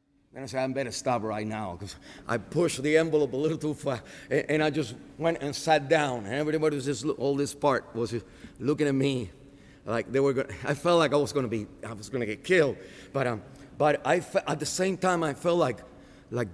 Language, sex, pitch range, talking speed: English, male, 130-185 Hz, 235 wpm